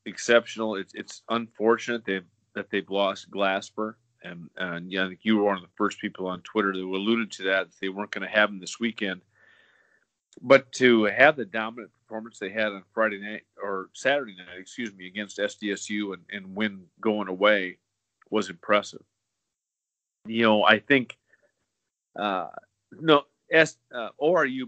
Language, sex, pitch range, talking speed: English, male, 100-120 Hz, 165 wpm